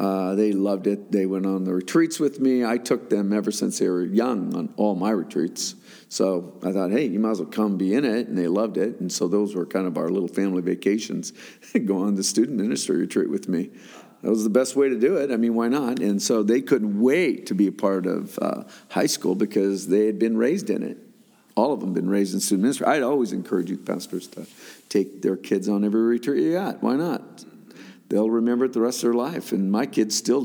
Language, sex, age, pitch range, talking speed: English, male, 50-69, 100-135 Hz, 250 wpm